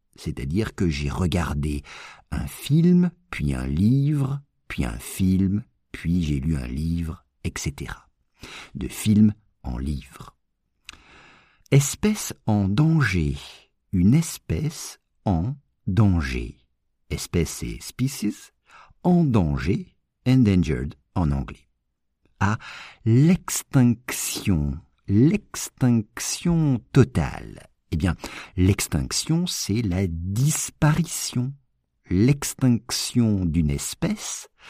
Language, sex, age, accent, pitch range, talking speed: English, male, 50-69, French, 85-140 Hz, 85 wpm